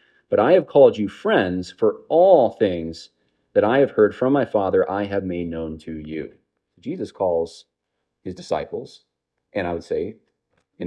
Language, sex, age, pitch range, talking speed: English, male, 30-49, 80-115 Hz, 170 wpm